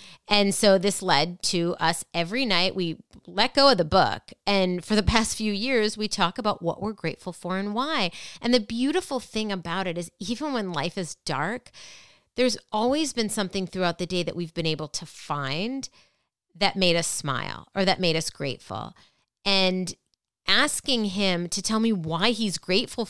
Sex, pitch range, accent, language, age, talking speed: female, 175-225 Hz, American, English, 30-49, 185 wpm